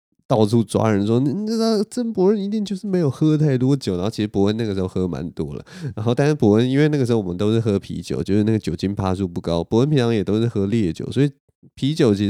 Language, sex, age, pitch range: Chinese, male, 20-39, 105-140 Hz